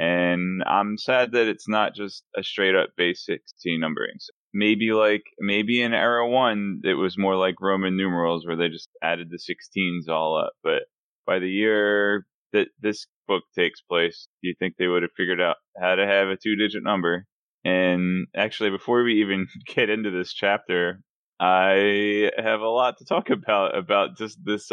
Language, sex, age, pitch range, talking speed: English, male, 20-39, 90-105 Hz, 185 wpm